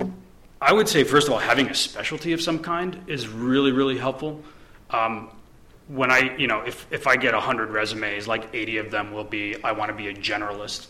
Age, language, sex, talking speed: 30-49, English, male, 215 wpm